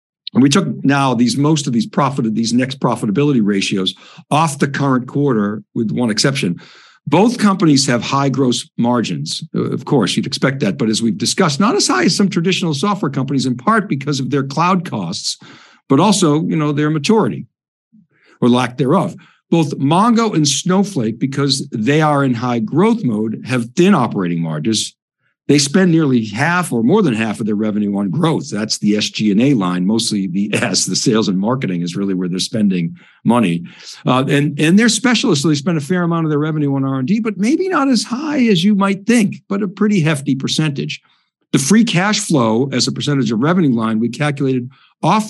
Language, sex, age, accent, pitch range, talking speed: English, male, 60-79, American, 125-180 Hz, 195 wpm